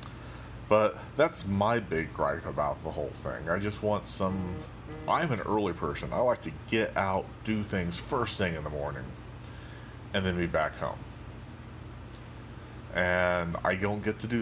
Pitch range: 95-115 Hz